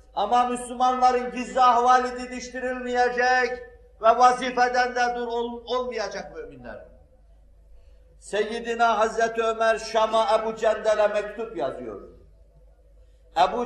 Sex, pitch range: male, 215-240 Hz